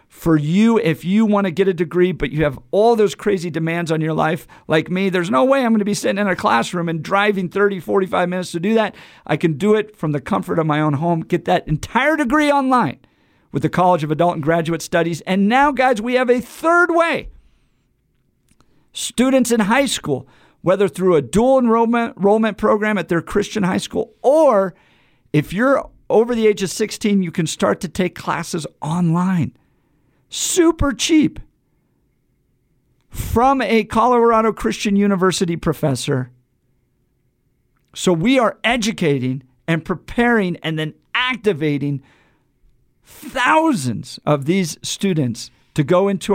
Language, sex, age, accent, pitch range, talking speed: English, male, 50-69, American, 155-220 Hz, 165 wpm